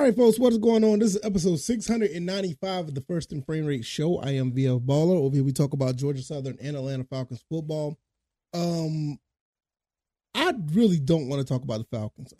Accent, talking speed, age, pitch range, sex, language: American, 205 wpm, 20-39, 125-155 Hz, male, English